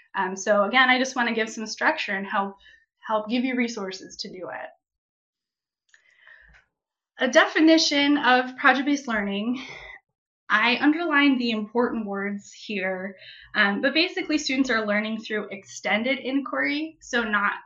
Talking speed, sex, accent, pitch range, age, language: 140 wpm, female, American, 200-260 Hz, 10-29, English